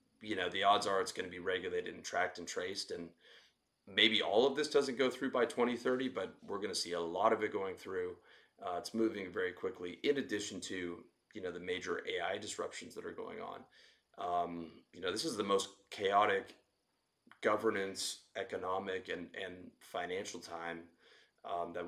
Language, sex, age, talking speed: English, male, 30-49, 190 wpm